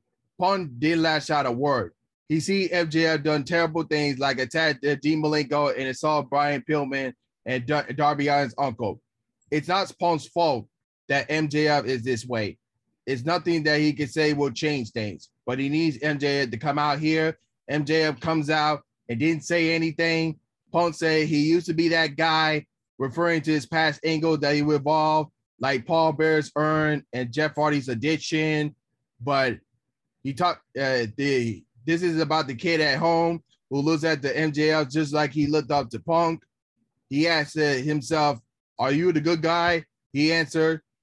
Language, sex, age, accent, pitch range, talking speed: English, male, 20-39, American, 140-160 Hz, 170 wpm